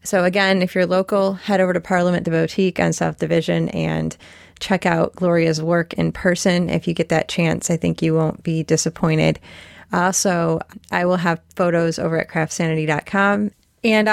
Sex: female